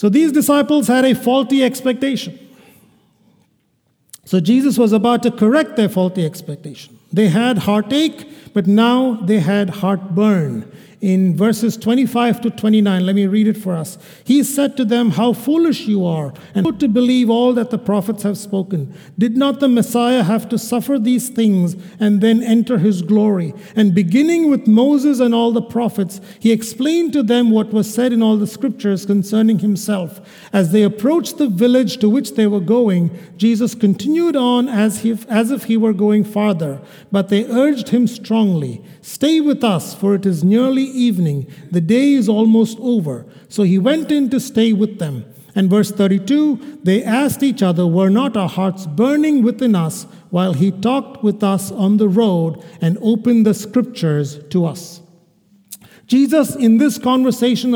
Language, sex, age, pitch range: English, male, 50-69, 195-245 Hz